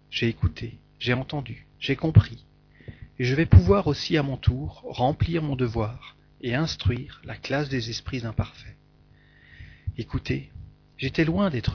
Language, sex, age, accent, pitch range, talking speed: French, male, 40-59, French, 115-150 Hz, 145 wpm